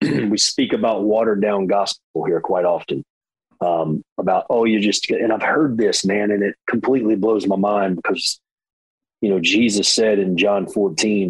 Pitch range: 100-125 Hz